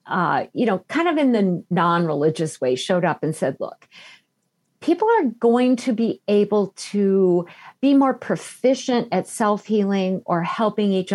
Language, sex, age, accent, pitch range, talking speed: English, female, 50-69, American, 180-245 Hz, 155 wpm